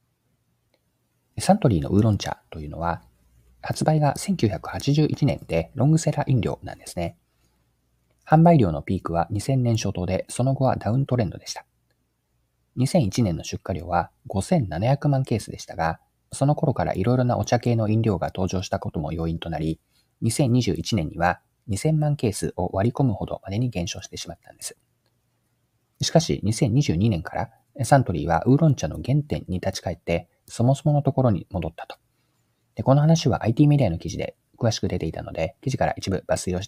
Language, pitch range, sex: Japanese, 90-130 Hz, male